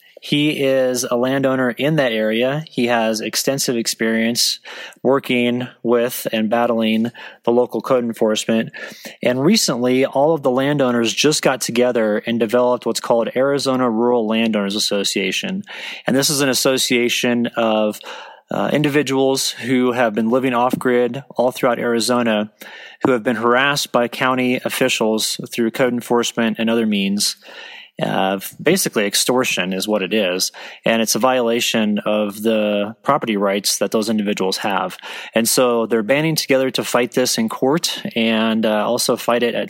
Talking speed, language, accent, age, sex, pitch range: 150 wpm, English, American, 30-49, male, 110-130 Hz